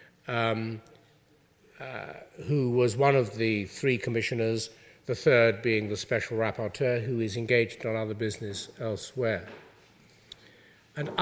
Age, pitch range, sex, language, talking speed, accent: 50-69, 140-205 Hz, male, English, 125 wpm, British